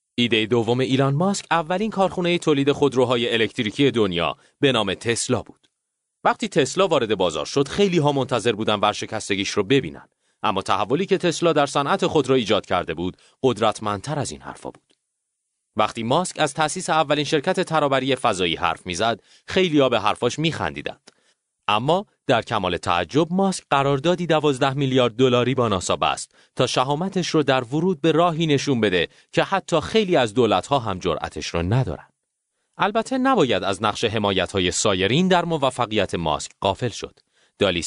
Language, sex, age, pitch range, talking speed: Persian, male, 30-49, 115-170 Hz, 160 wpm